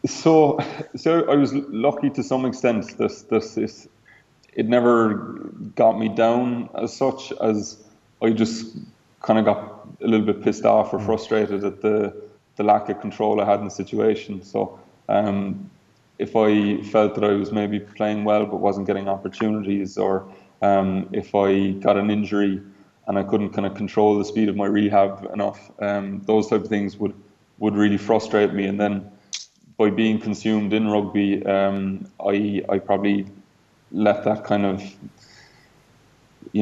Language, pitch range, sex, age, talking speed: English, 100-105 Hz, male, 20-39, 170 wpm